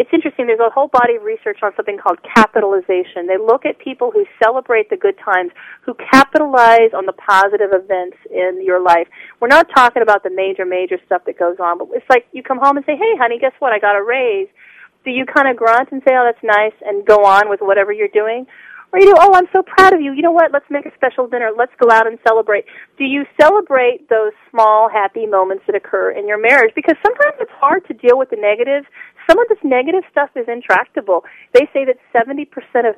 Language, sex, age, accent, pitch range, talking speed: English, female, 40-59, American, 195-290 Hz, 235 wpm